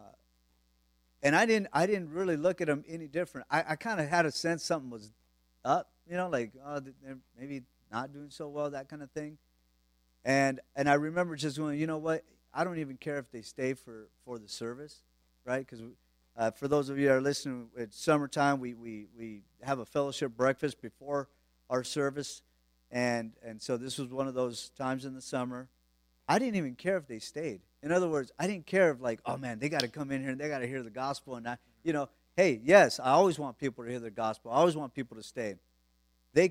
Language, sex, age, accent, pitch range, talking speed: English, male, 50-69, American, 110-150 Hz, 230 wpm